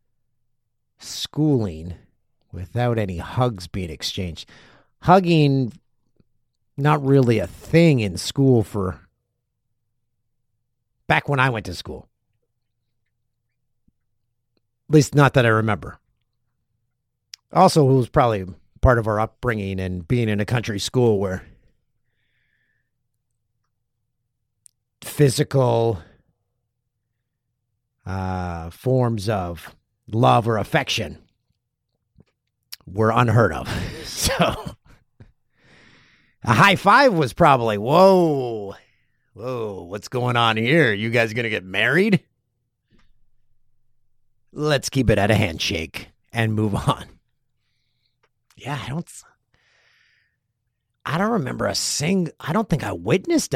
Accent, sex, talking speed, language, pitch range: American, male, 100 wpm, English, 110-125 Hz